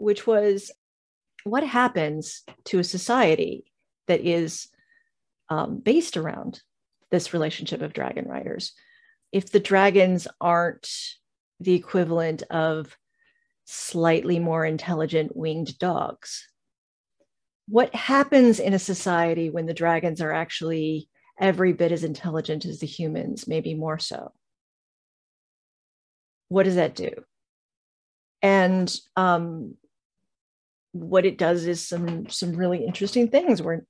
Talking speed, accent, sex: 115 wpm, American, female